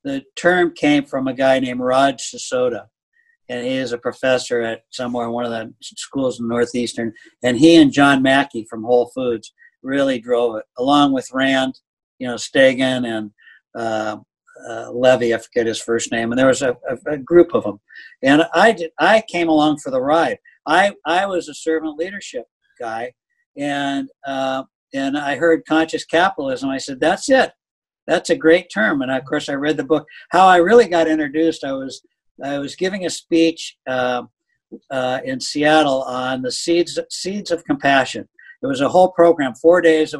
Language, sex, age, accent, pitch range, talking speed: English, male, 60-79, American, 130-170 Hz, 190 wpm